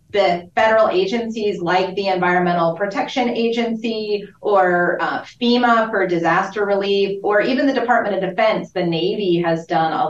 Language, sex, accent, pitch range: English, female, American, 175-225 Hz